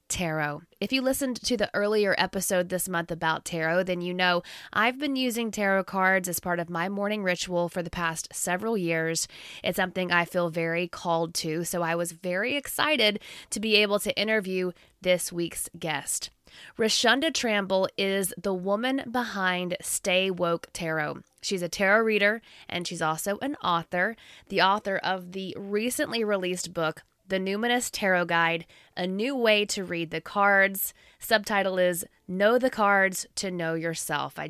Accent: American